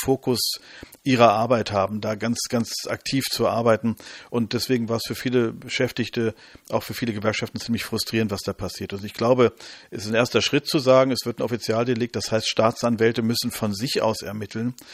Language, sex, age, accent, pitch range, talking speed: German, male, 50-69, German, 110-125 Hz, 195 wpm